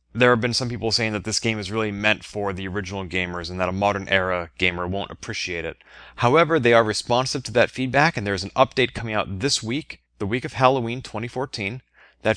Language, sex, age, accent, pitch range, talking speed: English, male, 30-49, American, 95-120 Hz, 230 wpm